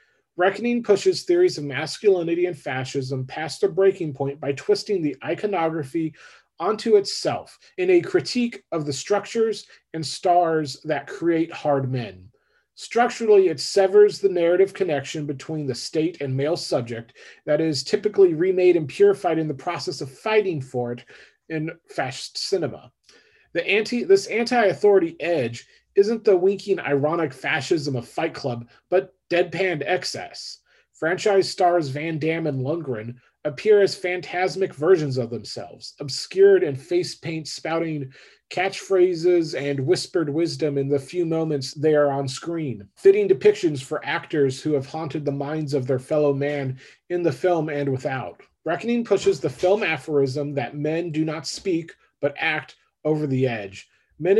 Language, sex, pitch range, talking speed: English, male, 145-195 Hz, 150 wpm